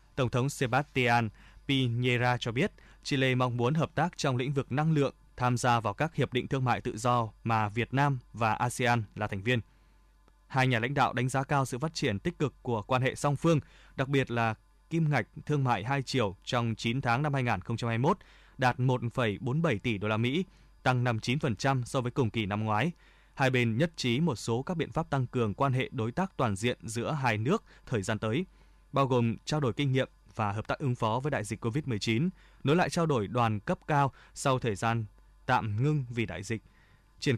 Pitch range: 115-145 Hz